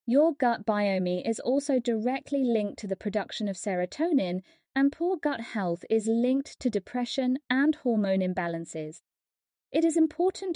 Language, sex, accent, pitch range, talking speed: English, female, British, 200-275 Hz, 150 wpm